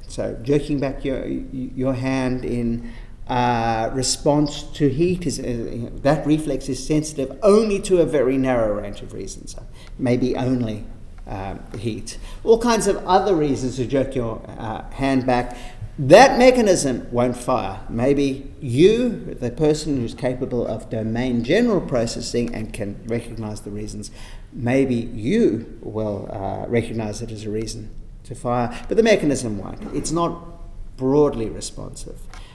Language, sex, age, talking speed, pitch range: English, male, 50-69, 145 wpm, 115-160 Hz